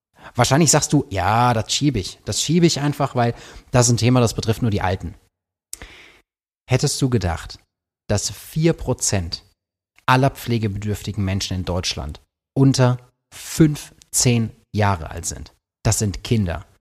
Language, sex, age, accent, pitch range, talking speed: German, male, 30-49, German, 100-120 Hz, 140 wpm